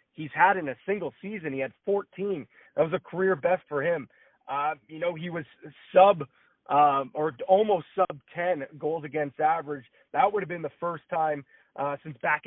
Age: 30-49